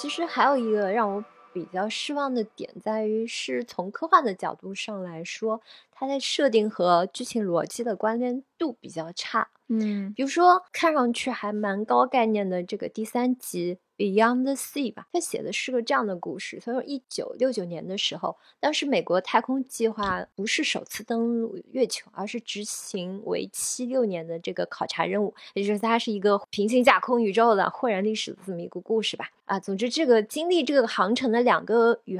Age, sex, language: 20-39, female, Chinese